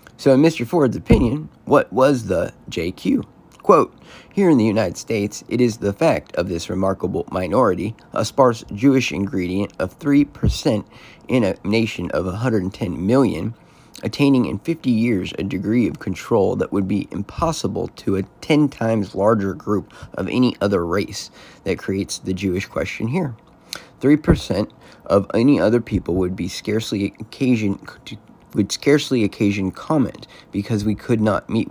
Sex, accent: male, American